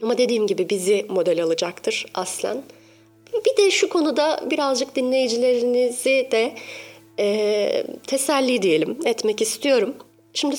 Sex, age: female, 30-49